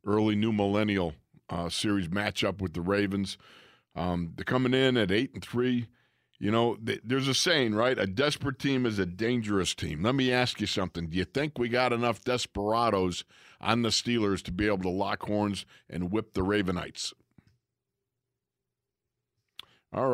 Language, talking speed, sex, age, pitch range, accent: English, 170 wpm, male, 50-69, 95-120 Hz, American